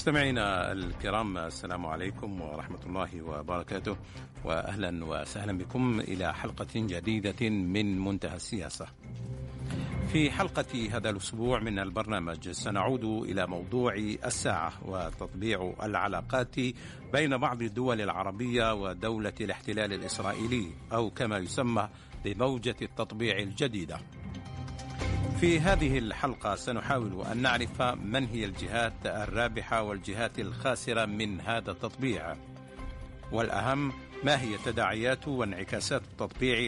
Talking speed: 100 wpm